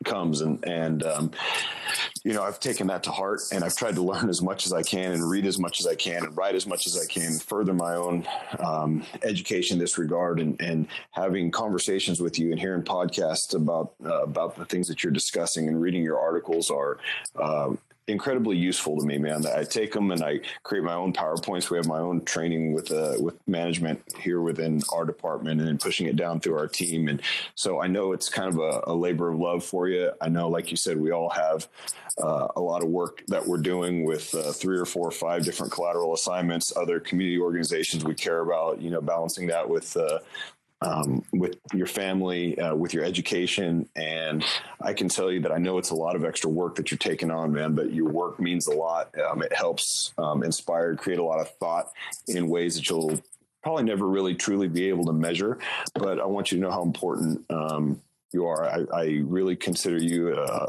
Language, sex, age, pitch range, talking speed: English, male, 30-49, 80-90 Hz, 220 wpm